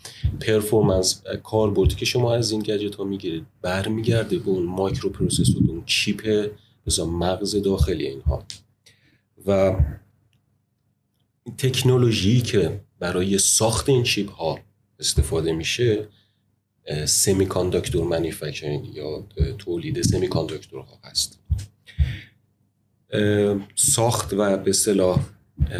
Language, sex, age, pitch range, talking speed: Persian, male, 30-49, 90-110 Hz, 95 wpm